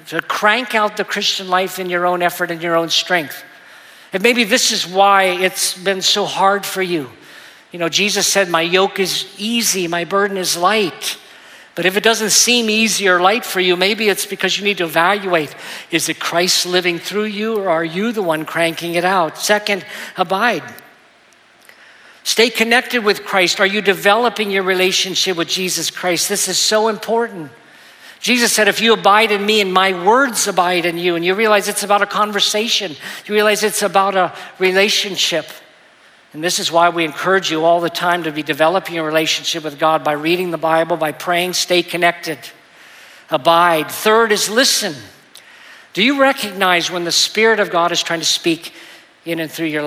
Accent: American